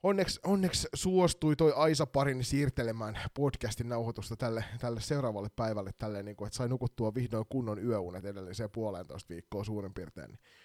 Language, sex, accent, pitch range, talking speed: Finnish, male, native, 110-140 Hz, 145 wpm